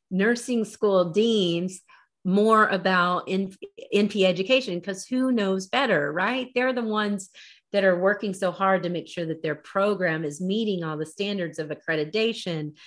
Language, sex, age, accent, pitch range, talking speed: English, female, 30-49, American, 160-205 Hz, 155 wpm